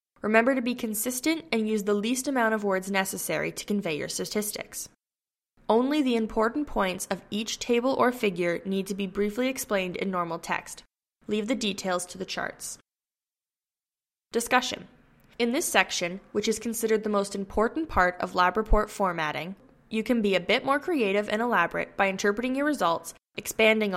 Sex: female